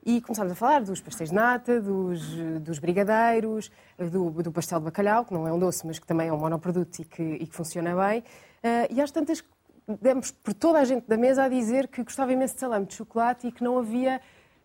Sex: female